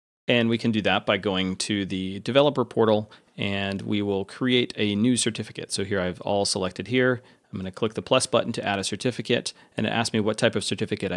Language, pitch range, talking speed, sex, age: English, 100-125 Hz, 230 wpm, male, 30-49